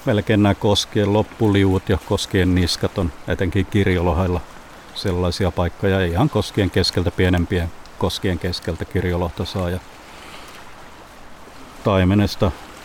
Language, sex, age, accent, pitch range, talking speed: Finnish, male, 50-69, native, 90-105 Hz, 95 wpm